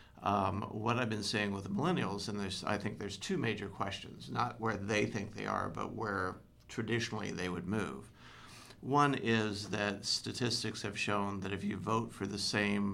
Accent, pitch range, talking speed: American, 100-115 Hz, 190 wpm